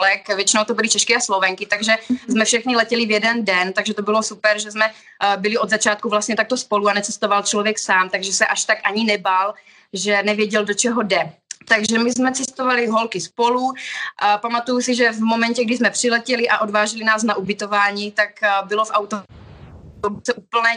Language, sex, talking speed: Slovak, female, 190 wpm